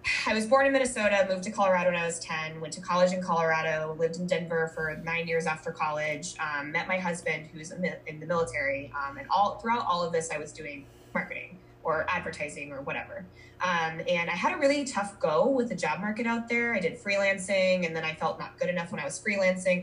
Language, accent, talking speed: English, American, 230 wpm